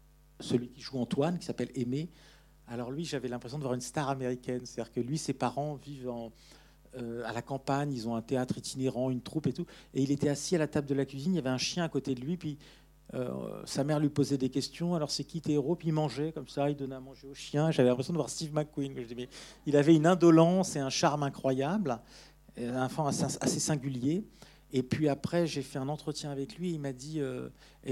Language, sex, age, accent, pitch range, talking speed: French, male, 50-69, French, 130-155 Hz, 235 wpm